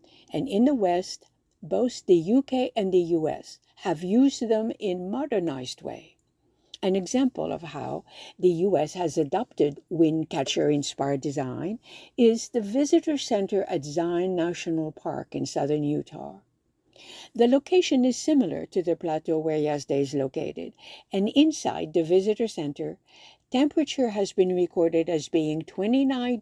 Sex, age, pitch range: female, 60-79, 165-235 Hz